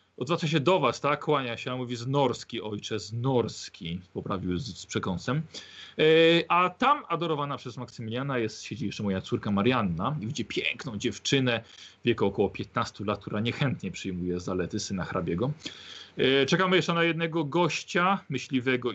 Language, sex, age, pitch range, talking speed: Polish, male, 40-59, 105-135 Hz, 160 wpm